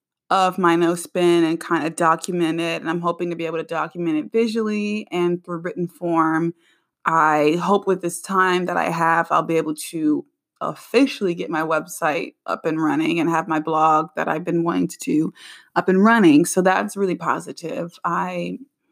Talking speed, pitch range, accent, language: 190 wpm, 165-240 Hz, American, English